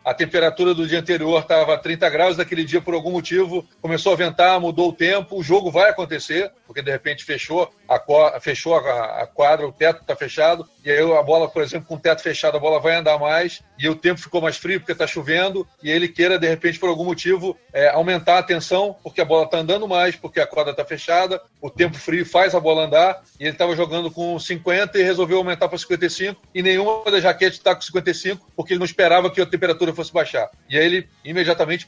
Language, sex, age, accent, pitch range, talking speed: Portuguese, male, 40-59, Brazilian, 160-185 Hz, 225 wpm